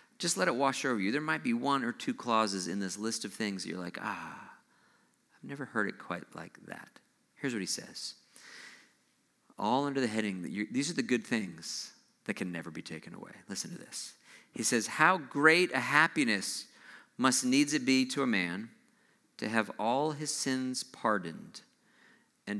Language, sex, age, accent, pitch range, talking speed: English, male, 40-59, American, 100-155 Hz, 195 wpm